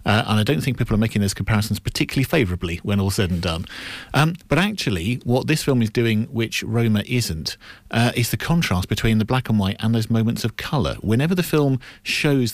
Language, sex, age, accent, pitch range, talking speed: English, male, 50-69, British, 105-125 Hz, 220 wpm